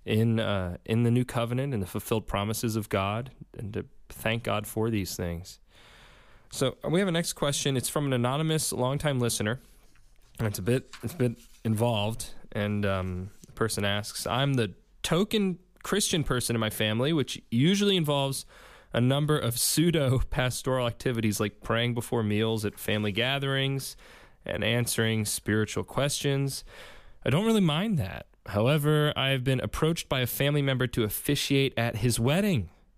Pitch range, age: 110-135 Hz, 20-39